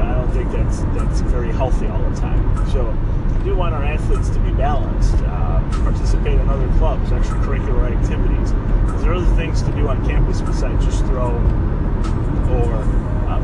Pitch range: 85-105 Hz